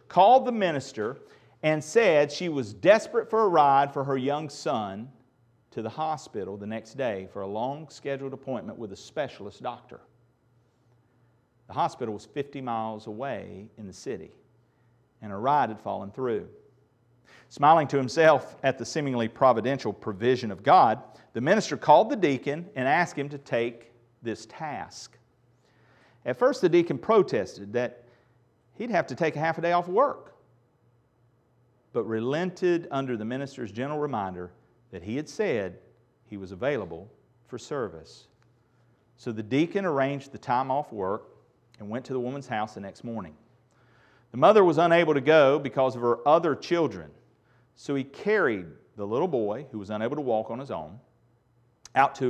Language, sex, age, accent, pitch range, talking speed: English, male, 40-59, American, 115-140 Hz, 165 wpm